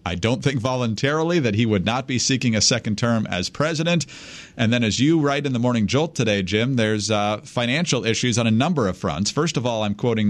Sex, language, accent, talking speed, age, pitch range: male, English, American, 235 wpm, 50-69, 105-140 Hz